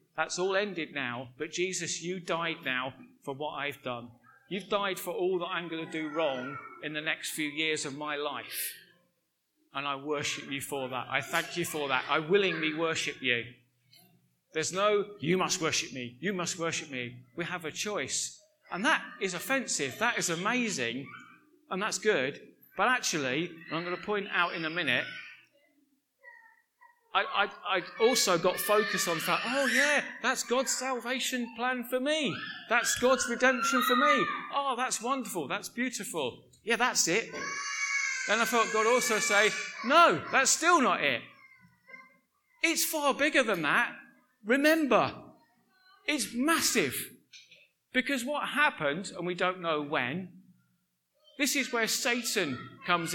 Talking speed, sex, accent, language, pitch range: 160 wpm, male, British, English, 160-260 Hz